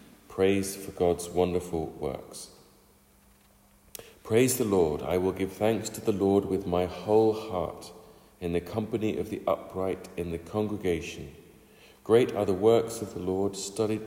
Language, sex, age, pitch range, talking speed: English, male, 40-59, 85-100 Hz, 155 wpm